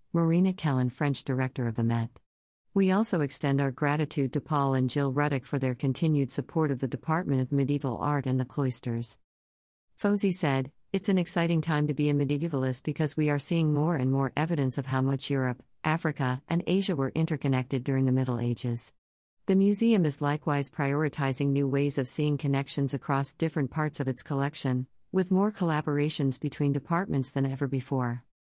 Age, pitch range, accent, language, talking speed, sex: 50-69, 130-155 Hz, American, English, 180 wpm, female